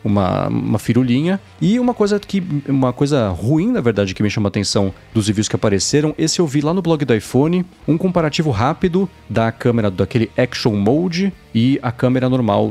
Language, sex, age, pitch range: Portuguese, male, 30-49, 100-140 Hz